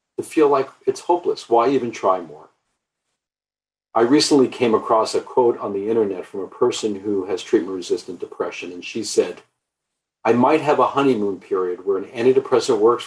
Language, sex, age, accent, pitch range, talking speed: English, male, 50-69, American, 355-425 Hz, 170 wpm